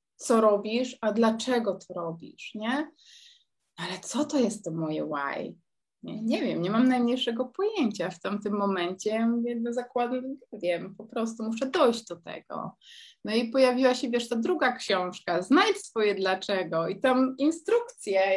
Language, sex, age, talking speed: Polish, female, 20-39, 155 wpm